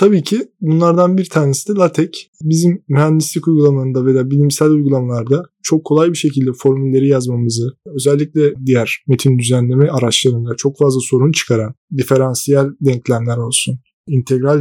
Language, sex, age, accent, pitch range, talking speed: Turkish, male, 20-39, native, 130-165 Hz, 130 wpm